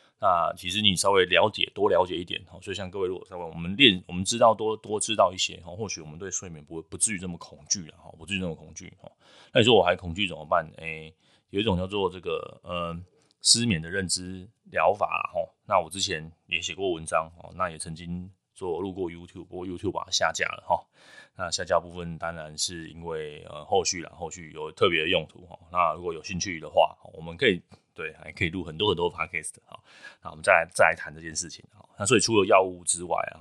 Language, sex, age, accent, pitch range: Chinese, male, 20-39, native, 80-95 Hz